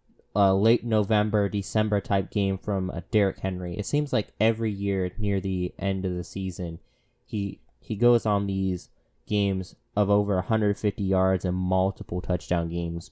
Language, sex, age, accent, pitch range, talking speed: English, male, 20-39, American, 95-115 Hz, 160 wpm